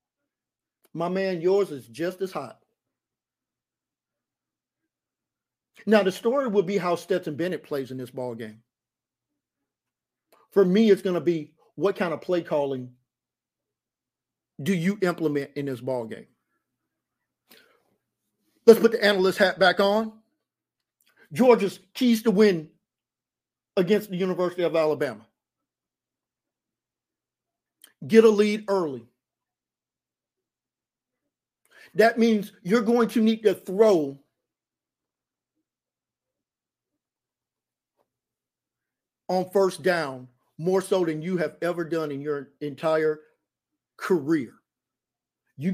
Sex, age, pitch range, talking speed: male, 50-69, 145-200 Hz, 105 wpm